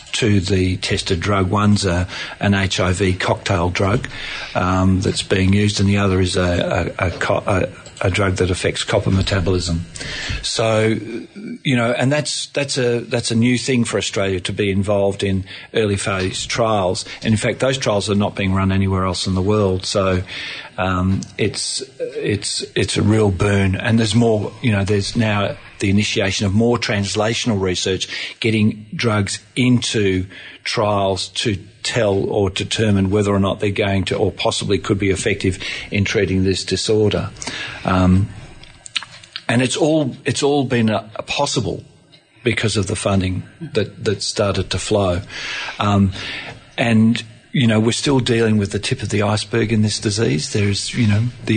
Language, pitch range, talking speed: English, 95-115 Hz, 170 wpm